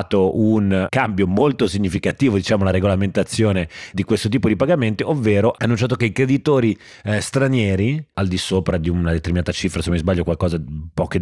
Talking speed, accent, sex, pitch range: 175 wpm, native, male, 95-110 Hz